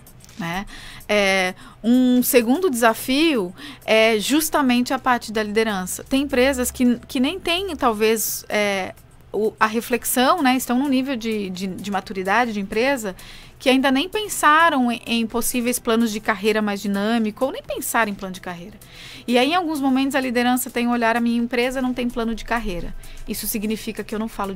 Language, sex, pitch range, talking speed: Portuguese, female, 210-255 Hz, 185 wpm